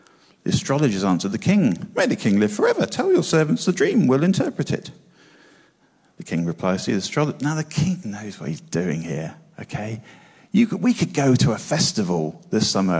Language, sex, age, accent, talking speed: English, male, 40-59, British, 200 wpm